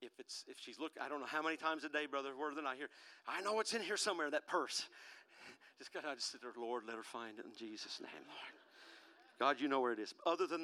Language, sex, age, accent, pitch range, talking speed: English, male, 50-69, American, 130-175 Hz, 275 wpm